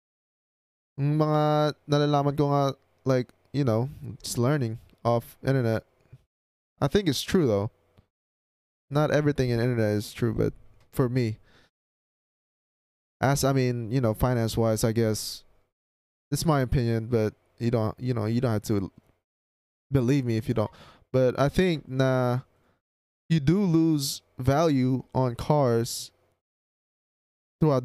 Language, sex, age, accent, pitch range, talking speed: Filipino, male, 20-39, American, 110-145 Hz, 130 wpm